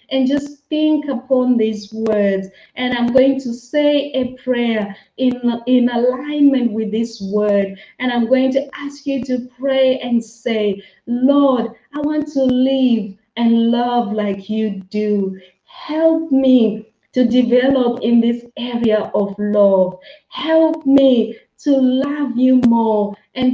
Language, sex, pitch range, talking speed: English, female, 220-270 Hz, 140 wpm